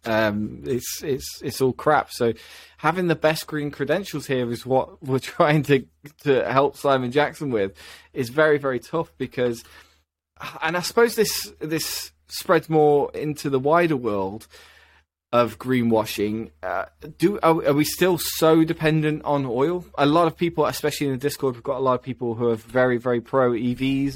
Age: 20-39